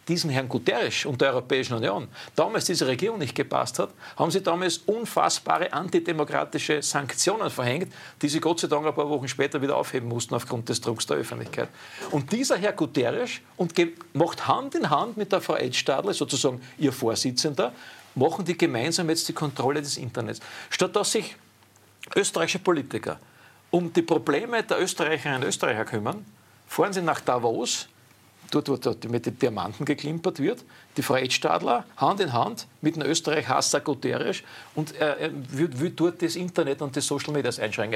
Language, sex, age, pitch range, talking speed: German, male, 50-69, 135-175 Hz, 170 wpm